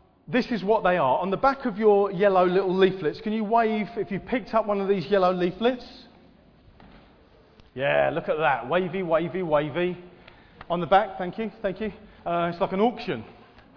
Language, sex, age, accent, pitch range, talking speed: English, male, 40-59, British, 170-205 Hz, 190 wpm